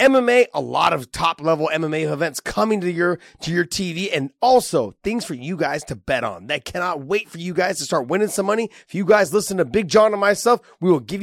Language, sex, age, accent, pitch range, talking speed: English, male, 30-49, American, 115-175 Hz, 240 wpm